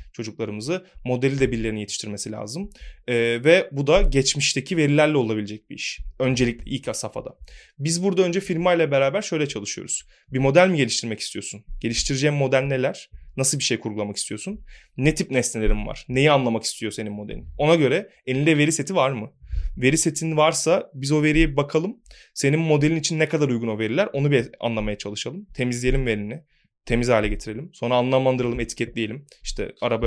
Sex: male